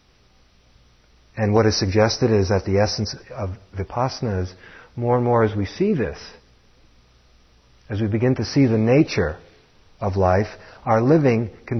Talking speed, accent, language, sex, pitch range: 155 wpm, American, English, male, 80-120 Hz